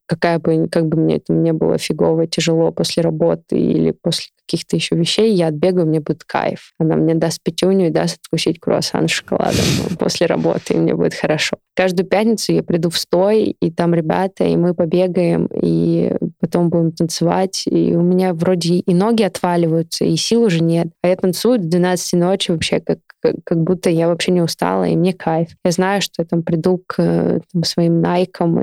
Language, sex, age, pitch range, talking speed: Russian, female, 20-39, 165-185 Hz, 190 wpm